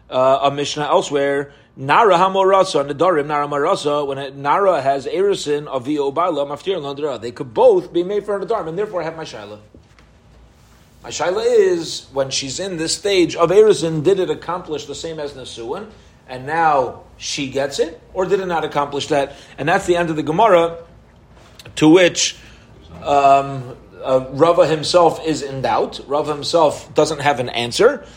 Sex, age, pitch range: male, 30-49, 120-160 Hz